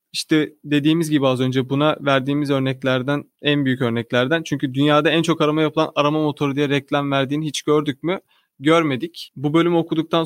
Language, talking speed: Turkish, 170 wpm